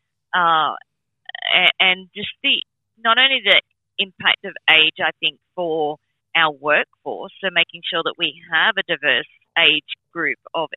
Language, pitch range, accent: English, 160-195 Hz, Australian